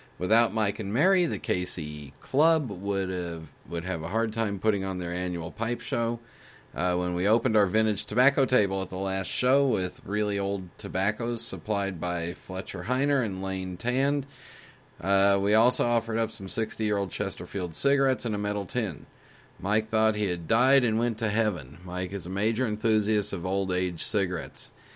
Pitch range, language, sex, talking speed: 95-120 Hz, English, male, 175 wpm